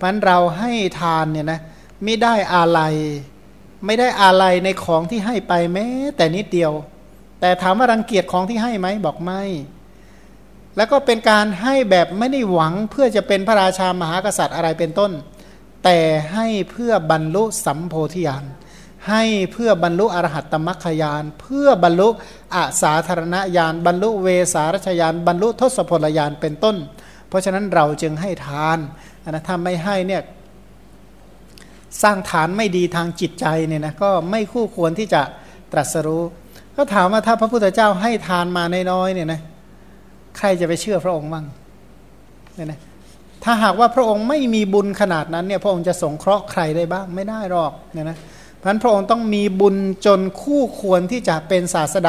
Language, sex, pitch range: Thai, male, 165-205 Hz